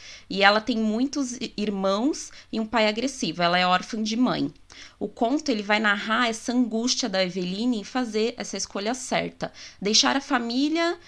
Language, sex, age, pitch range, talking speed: Portuguese, female, 20-39, 190-245 Hz, 170 wpm